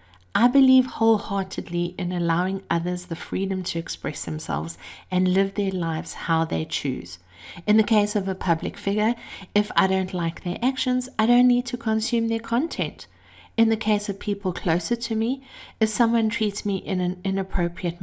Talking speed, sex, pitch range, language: 175 wpm, female, 170-215 Hz, English